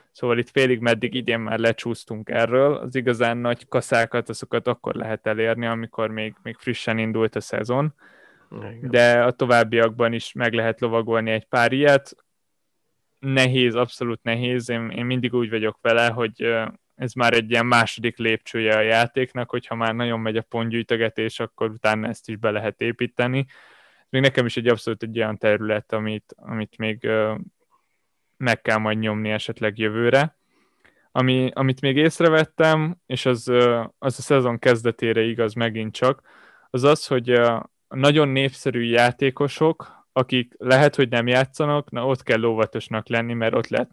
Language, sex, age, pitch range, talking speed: Hungarian, male, 20-39, 115-130 Hz, 155 wpm